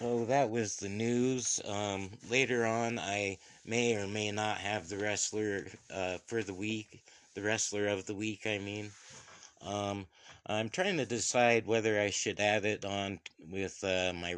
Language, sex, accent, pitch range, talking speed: English, male, American, 95-115 Hz, 175 wpm